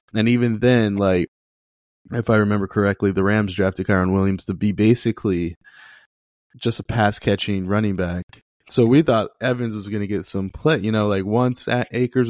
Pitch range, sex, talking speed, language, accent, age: 105-135 Hz, male, 180 wpm, English, American, 20-39